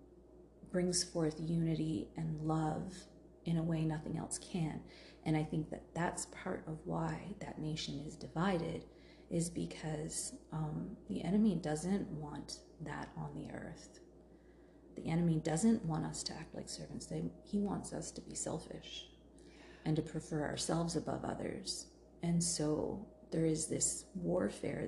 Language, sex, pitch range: English, female, 150-170 Hz